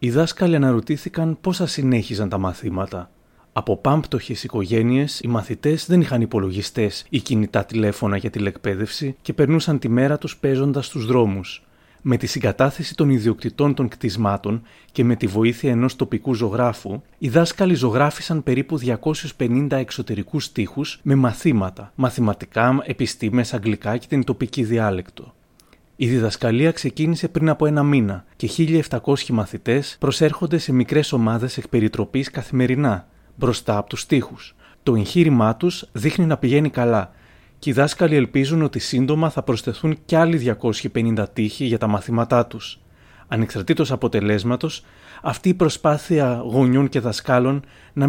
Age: 30-49